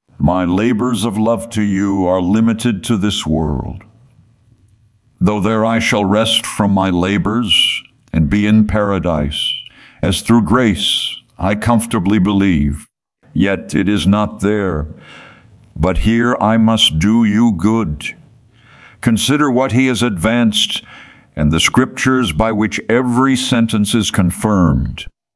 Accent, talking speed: American, 130 wpm